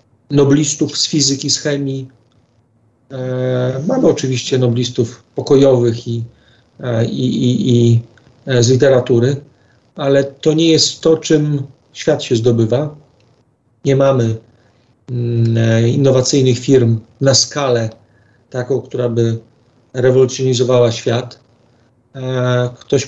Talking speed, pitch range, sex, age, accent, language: 90 wpm, 120-135 Hz, male, 40-59, native, Polish